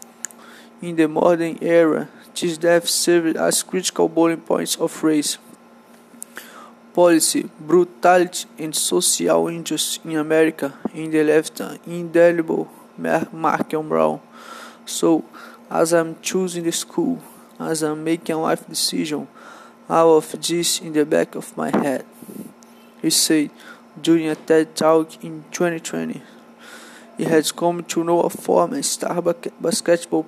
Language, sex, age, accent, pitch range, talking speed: English, male, 20-39, Brazilian, 160-175 Hz, 130 wpm